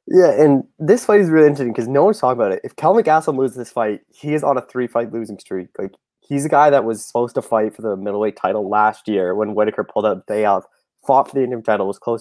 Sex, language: male, English